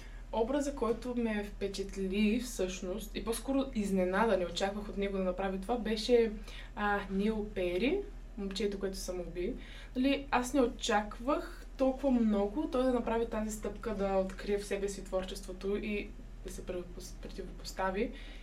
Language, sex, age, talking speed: Bulgarian, female, 20-39, 145 wpm